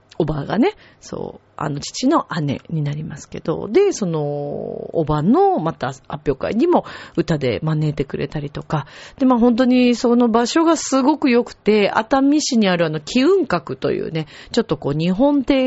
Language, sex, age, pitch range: Japanese, female, 40-59, 155-255 Hz